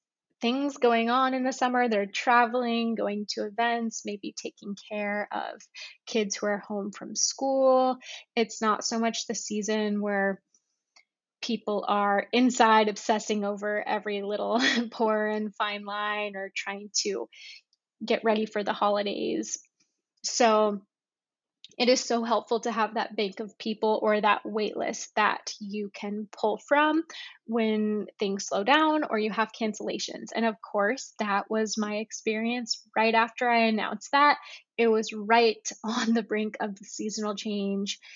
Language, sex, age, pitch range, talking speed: English, female, 20-39, 210-235 Hz, 155 wpm